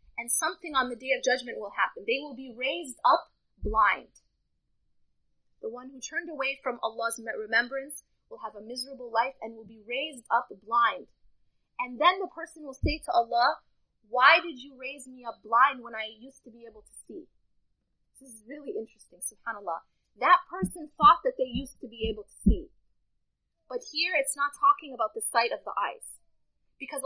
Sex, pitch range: female, 240-315 Hz